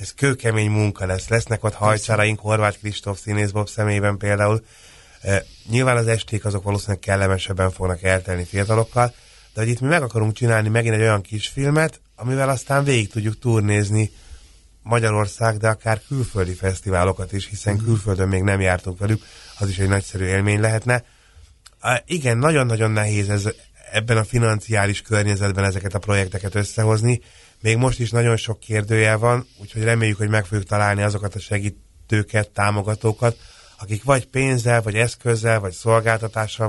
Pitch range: 100-120 Hz